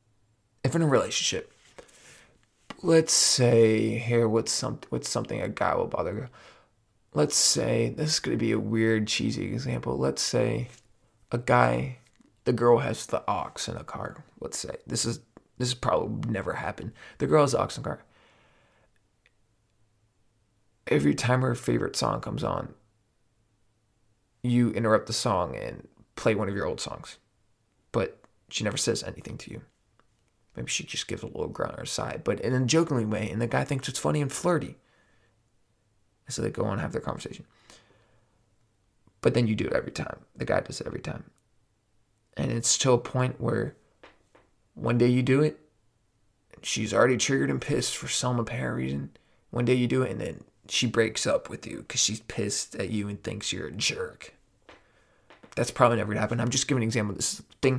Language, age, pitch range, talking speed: English, 20-39, 110-125 Hz, 185 wpm